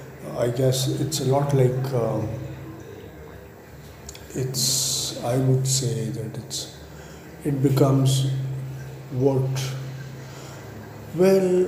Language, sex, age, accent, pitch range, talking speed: English, male, 50-69, Indian, 125-150 Hz, 85 wpm